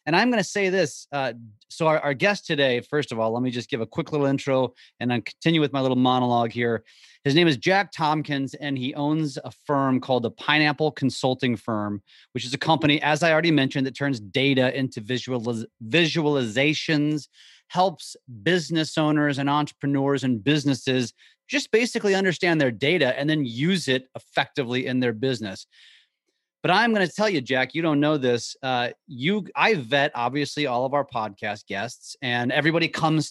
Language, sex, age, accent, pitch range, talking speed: English, male, 30-49, American, 130-160 Hz, 185 wpm